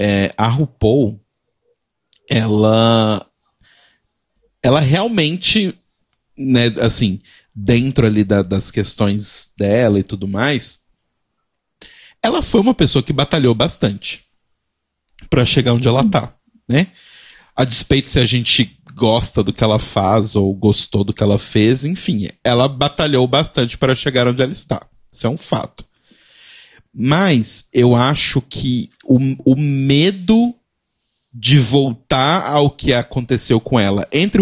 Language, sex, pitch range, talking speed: Portuguese, male, 105-140 Hz, 130 wpm